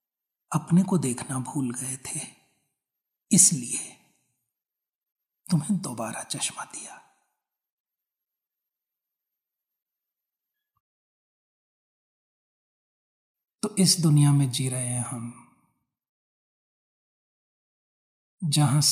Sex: male